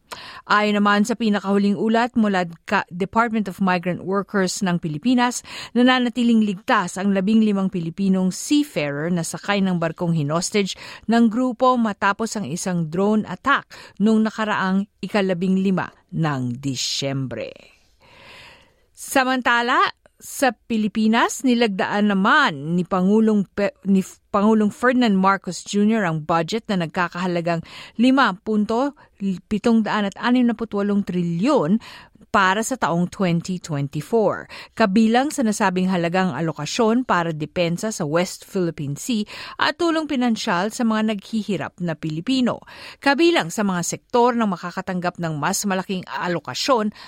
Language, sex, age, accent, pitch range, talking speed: Filipino, female, 50-69, native, 180-235 Hz, 115 wpm